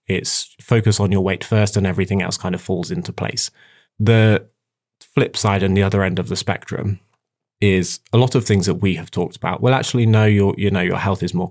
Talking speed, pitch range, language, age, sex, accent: 230 wpm, 95-110 Hz, English, 20-39, male, British